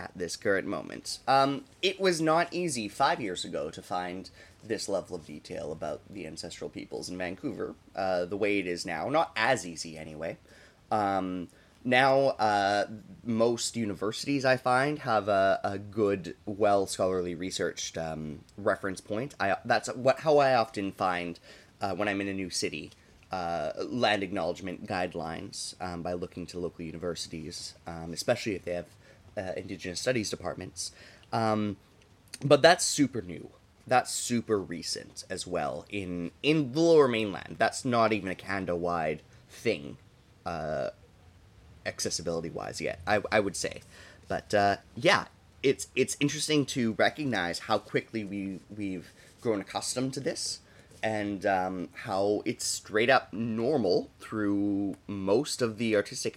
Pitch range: 90-115 Hz